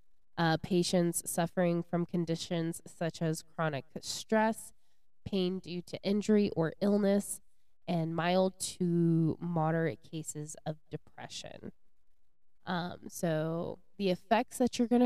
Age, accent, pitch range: 20-39, American, 165-205 Hz